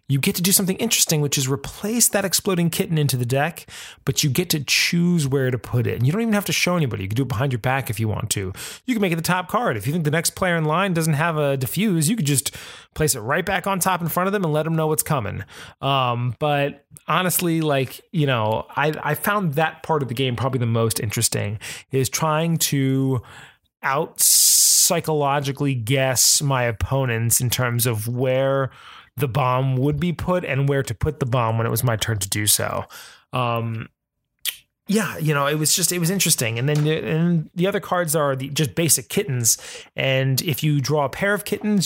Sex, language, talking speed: male, English, 225 wpm